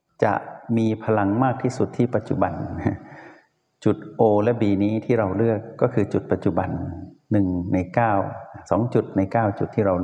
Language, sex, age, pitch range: Thai, male, 60-79, 100-120 Hz